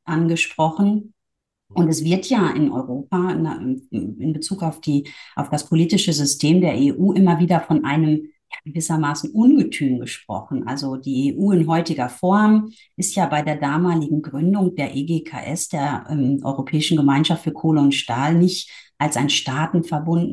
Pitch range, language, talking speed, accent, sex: 145-180 Hz, German, 145 wpm, German, female